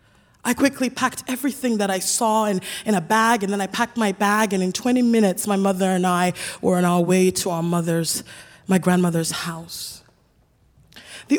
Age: 20-39